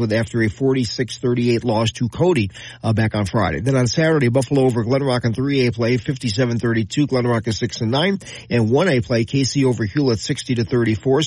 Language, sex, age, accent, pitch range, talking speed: English, male, 40-59, American, 115-135 Hz, 160 wpm